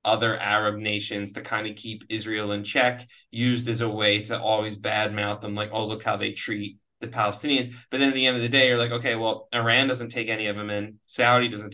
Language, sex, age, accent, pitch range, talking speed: English, male, 20-39, American, 110-135 Hz, 240 wpm